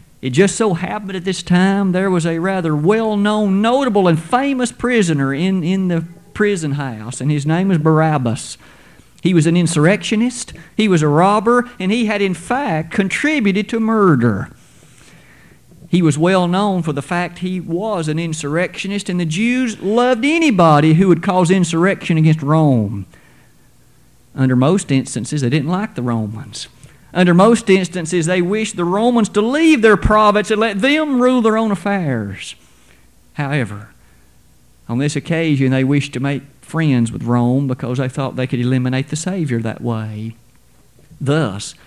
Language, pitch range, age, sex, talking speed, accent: English, 130-200 Hz, 50-69, male, 160 wpm, American